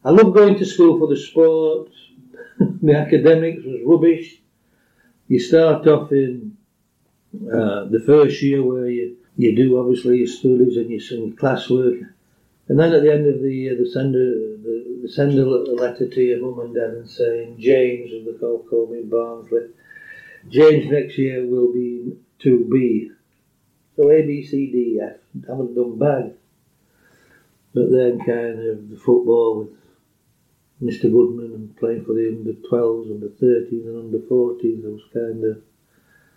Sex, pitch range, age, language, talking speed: male, 115-135 Hz, 60-79, English, 160 wpm